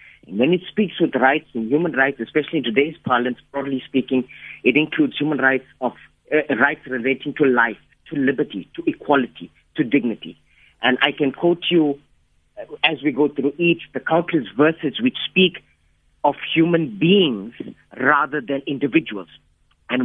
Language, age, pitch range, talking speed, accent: English, 50-69, 120-160 Hz, 160 wpm, Indian